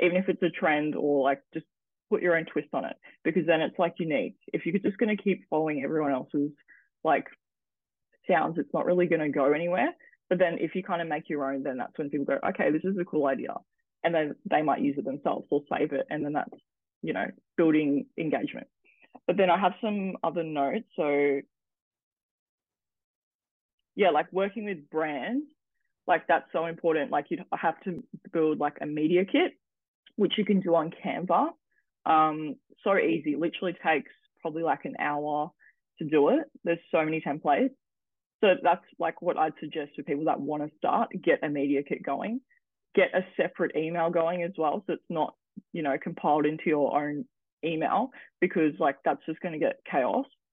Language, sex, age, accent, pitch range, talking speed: English, female, 20-39, Australian, 150-190 Hz, 195 wpm